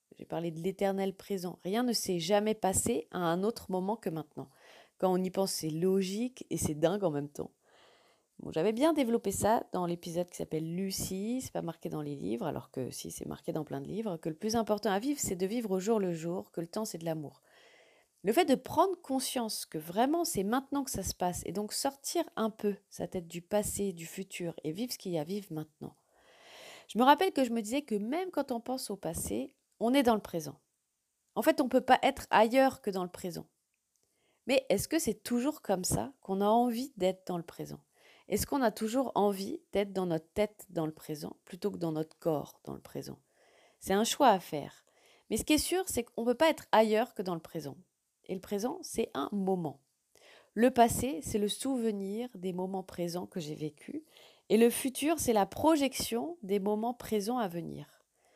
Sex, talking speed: female, 230 wpm